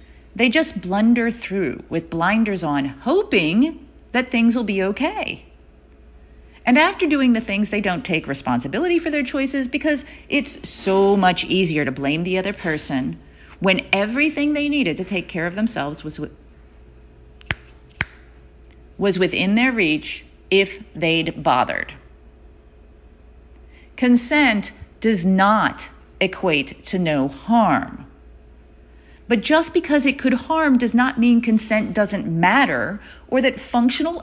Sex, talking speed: female, 130 wpm